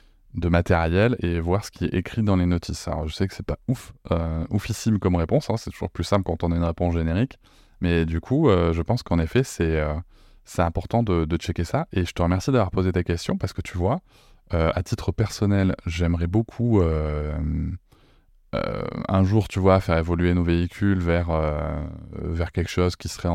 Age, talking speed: 20-39, 215 wpm